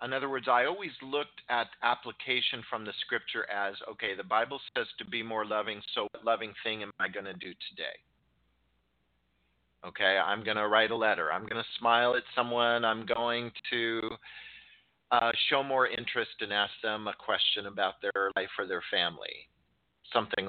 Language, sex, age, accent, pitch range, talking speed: English, male, 50-69, American, 100-130 Hz, 180 wpm